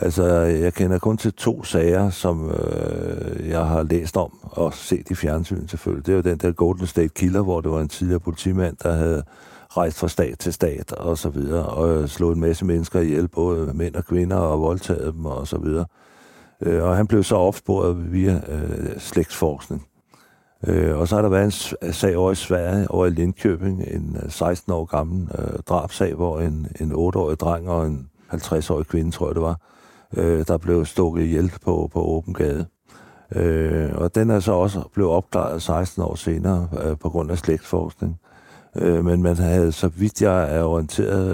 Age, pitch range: 60-79, 80-95 Hz